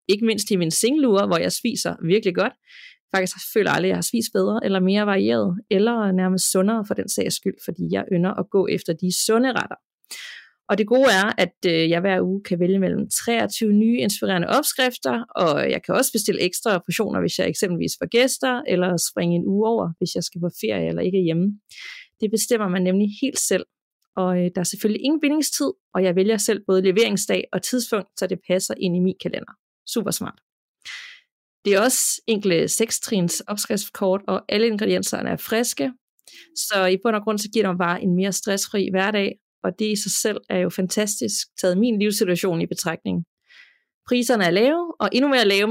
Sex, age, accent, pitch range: female, 30-49, native, 185-230 Hz